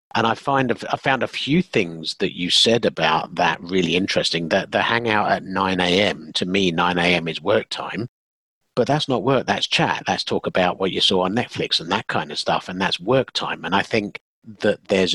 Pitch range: 80-100 Hz